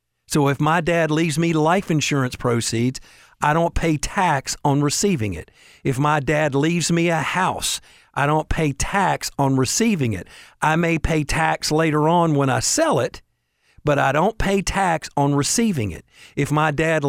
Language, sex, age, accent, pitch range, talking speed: English, male, 50-69, American, 130-165 Hz, 180 wpm